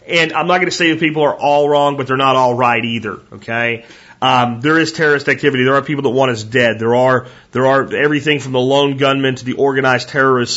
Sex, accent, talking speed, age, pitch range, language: male, American, 245 wpm, 30-49, 120-140 Hz, English